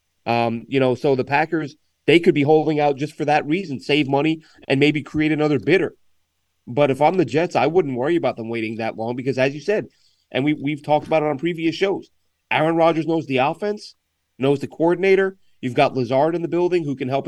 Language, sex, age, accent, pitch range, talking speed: English, male, 30-49, American, 130-175 Hz, 230 wpm